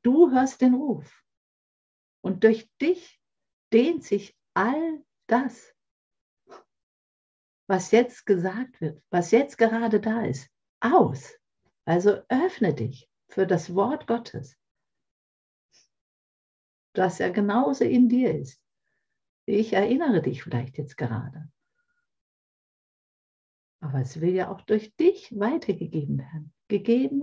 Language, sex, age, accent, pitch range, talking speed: German, female, 60-79, German, 155-255 Hz, 110 wpm